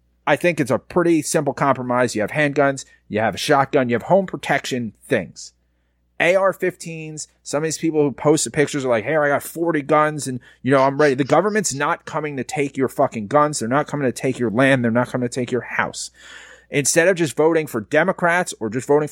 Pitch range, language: 125-165 Hz, English